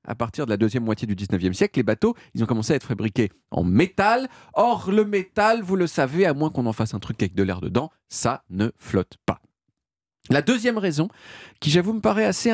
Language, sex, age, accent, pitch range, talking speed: French, male, 40-59, French, 110-185 Hz, 230 wpm